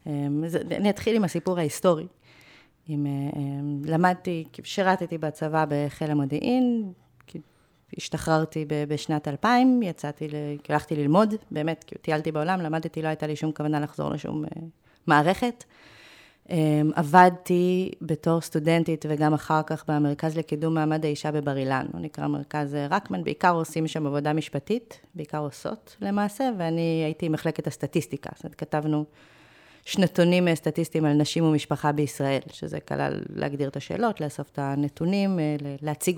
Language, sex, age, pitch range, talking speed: Hebrew, female, 30-49, 150-180 Hz, 125 wpm